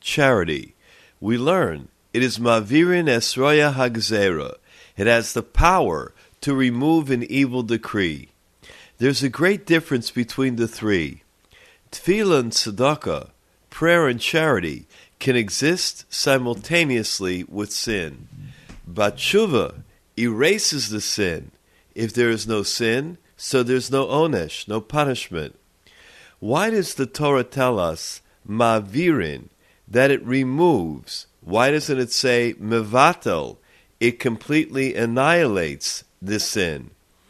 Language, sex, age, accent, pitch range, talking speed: English, male, 50-69, American, 115-150 Hz, 115 wpm